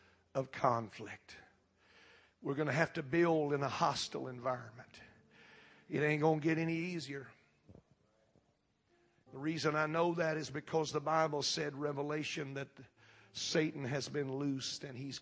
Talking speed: 145 wpm